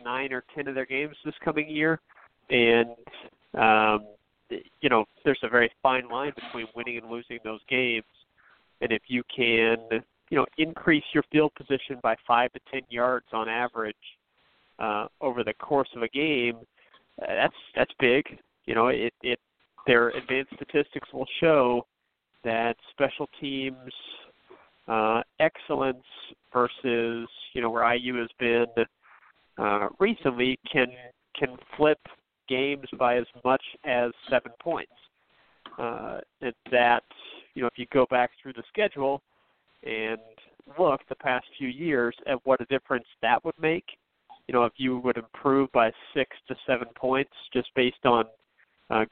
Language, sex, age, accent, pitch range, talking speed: English, male, 40-59, American, 115-135 Hz, 155 wpm